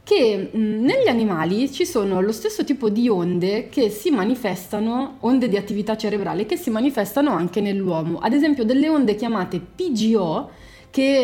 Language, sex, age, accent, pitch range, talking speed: Italian, female, 20-39, native, 190-255 Hz, 160 wpm